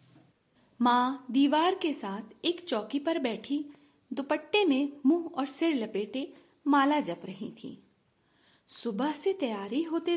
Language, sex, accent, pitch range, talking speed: Hindi, female, native, 215-320 Hz, 130 wpm